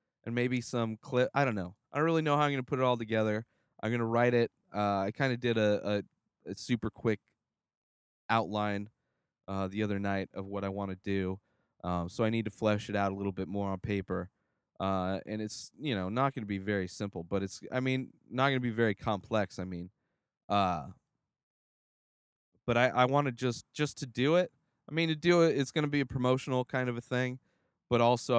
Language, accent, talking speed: English, American, 230 wpm